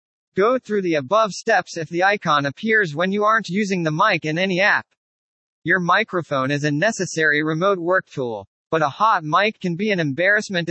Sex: male